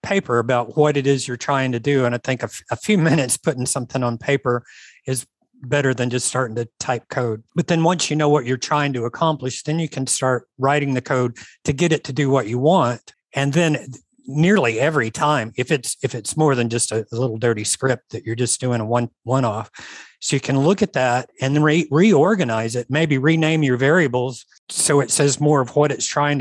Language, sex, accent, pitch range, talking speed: English, male, American, 120-150 Hz, 225 wpm